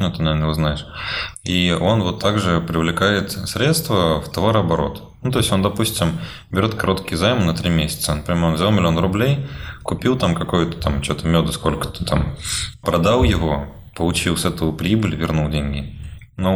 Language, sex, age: Russian, male, 20-39